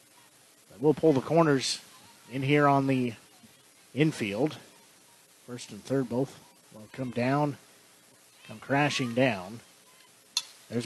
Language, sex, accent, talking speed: English, male, American, 110 wpm